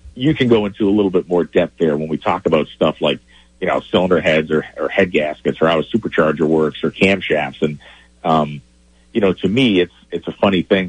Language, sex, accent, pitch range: English, male, American, 70-95 Hz